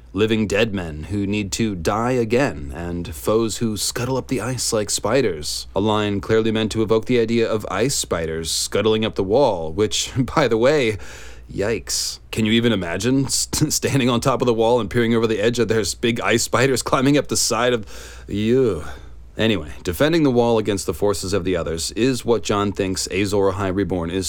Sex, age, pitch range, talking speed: male, 30-49, 95-115 Hz, 200 wpm